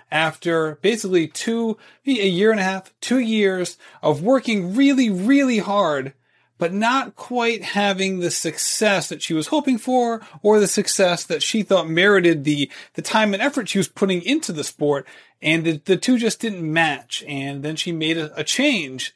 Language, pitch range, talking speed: English, 155-200 Hz, 180 wpm